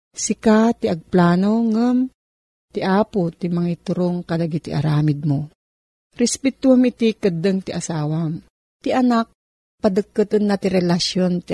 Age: 40-59